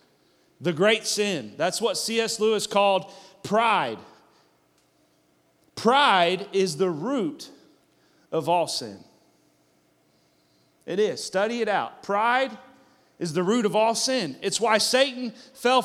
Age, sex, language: 40-59, male, English